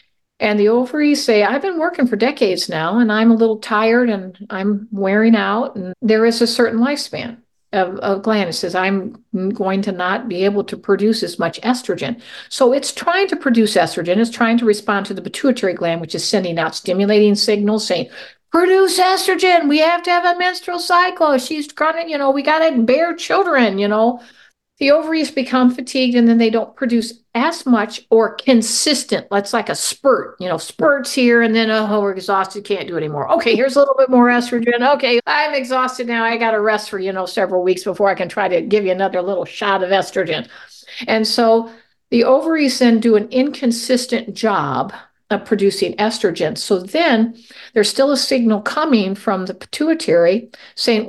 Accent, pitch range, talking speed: American, 200-260 Hz, 195 wpm